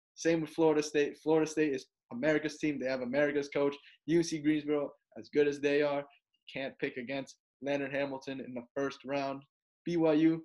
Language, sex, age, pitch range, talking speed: English, male, 10-29, 140-155 Hz, 170 wpm